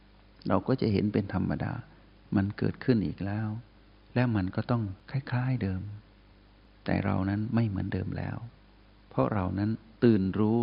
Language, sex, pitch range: Thai, male, 100-115 Hz